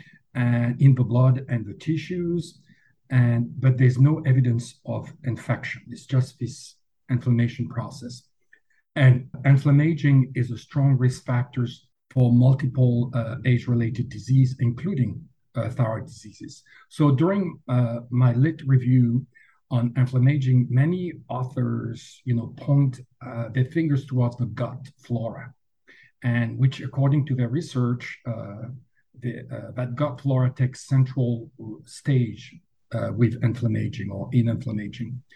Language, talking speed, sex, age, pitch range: English, 130 wpm, male, 50-69, 120-140 Hz